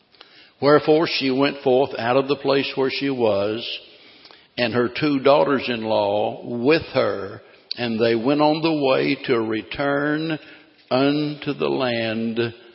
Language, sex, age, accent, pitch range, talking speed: English, male, 60-79, American, 135-160 Hz, 130 wpm